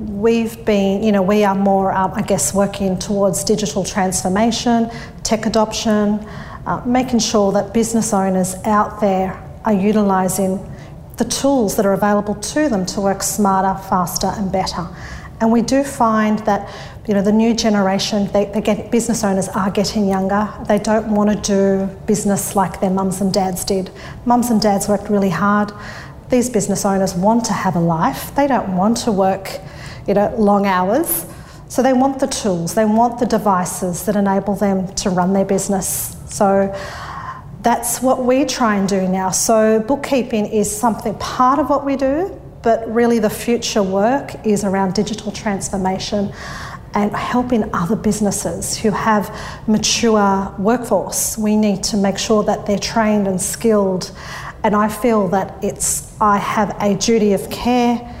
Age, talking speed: 40-59, 170 wpm